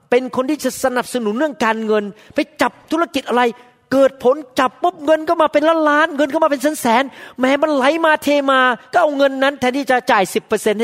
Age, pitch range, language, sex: 30-49, 210-270 Hz, Thai, male